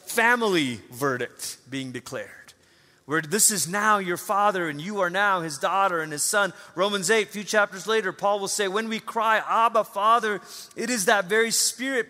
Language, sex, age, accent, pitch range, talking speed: English, male, 30-49, American, 135-205 Hz, 190 wpm